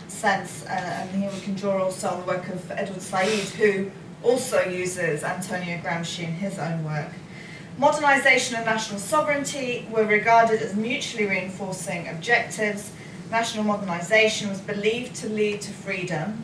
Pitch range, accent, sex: 175-210 Hz, British, female